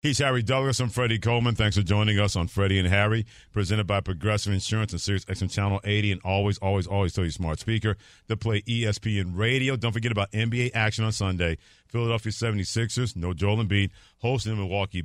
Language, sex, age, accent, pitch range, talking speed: English, male, 50-69, American, 100-130 Hz, 205 wpm